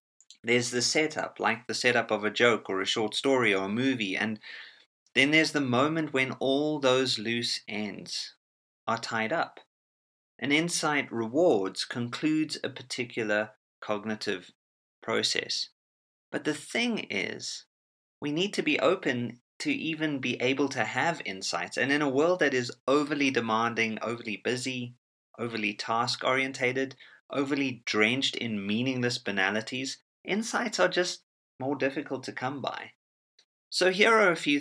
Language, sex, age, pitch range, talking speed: English, male, 30-49, 110-140 Hz, 145 wpm